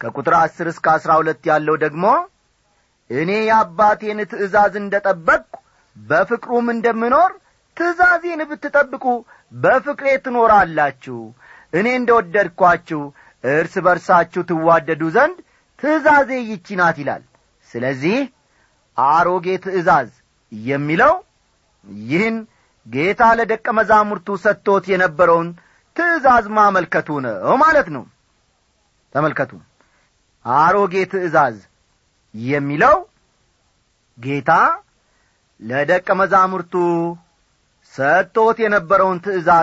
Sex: male